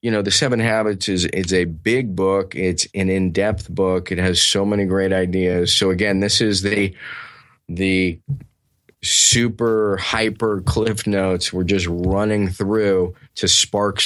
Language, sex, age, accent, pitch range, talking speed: English, male, 30-49, American, 95-110 Hz, 155 wpm